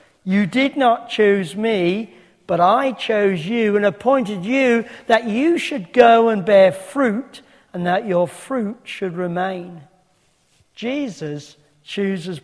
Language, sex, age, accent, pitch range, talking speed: English, male, 50-69, British, 180-230 Hz, 130 wpm